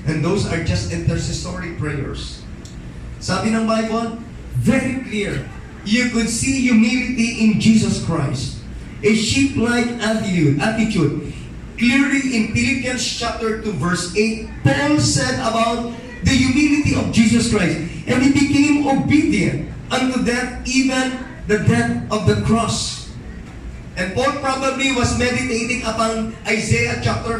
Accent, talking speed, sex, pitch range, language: Filipino, 125 wpm, male, 205-250 Hz, English